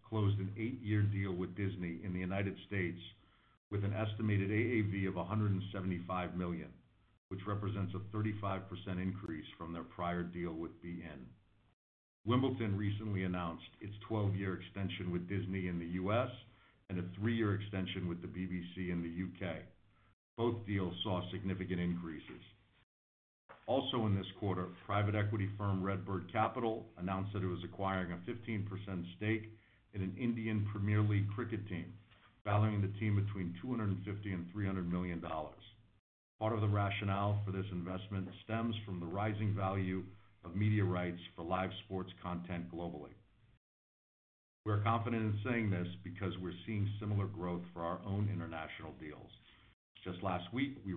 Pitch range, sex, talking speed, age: 90-105 Hz, male, 150 wpm, 50-69